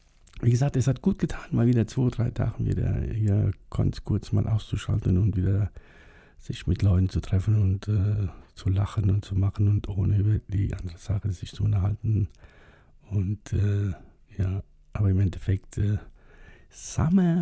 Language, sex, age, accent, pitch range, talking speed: German, male, 60-79, German, 95-110 Hz, 170 wpm